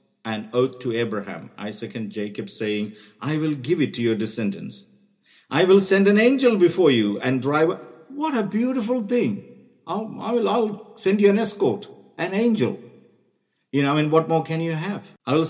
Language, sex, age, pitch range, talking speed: English, male, 50-69, 110-165 Hz, 185 wpm